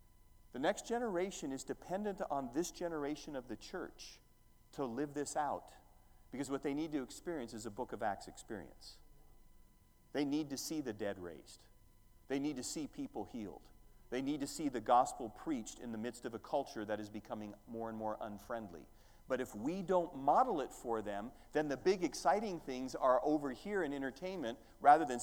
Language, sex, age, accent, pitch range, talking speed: English, male, 40-59, American, 120-175 Hz, 190 wpm